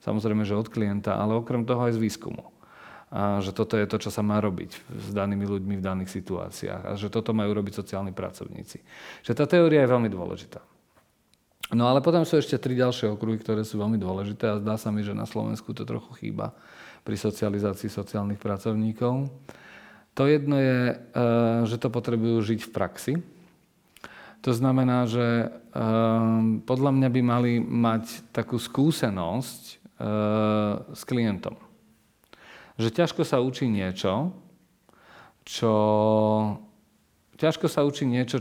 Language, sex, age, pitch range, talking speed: Slovak, male, 40-59, 105-125 Hz, 145 wpm